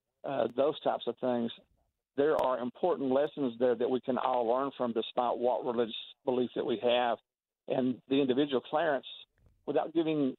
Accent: American